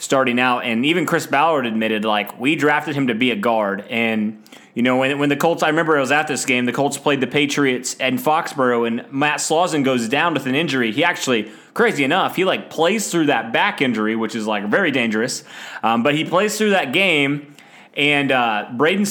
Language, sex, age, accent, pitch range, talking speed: English, male, 20-39, American, 120-155 Hz, 220 wpm